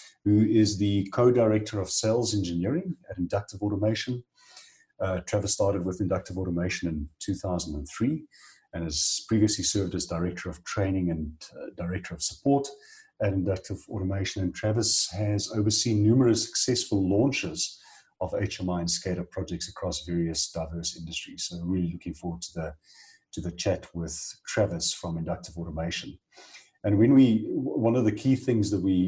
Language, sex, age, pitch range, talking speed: English, male, 40-59, 85-105 Hz, 150 wpm